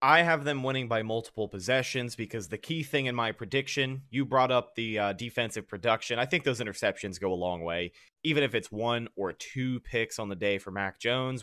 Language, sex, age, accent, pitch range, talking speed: English, male, 30-49, American, 100-120 Hz, 220 wpm